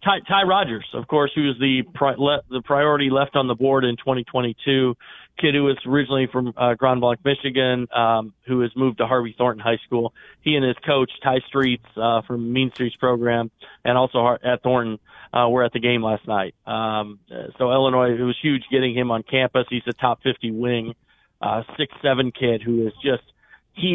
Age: 40-59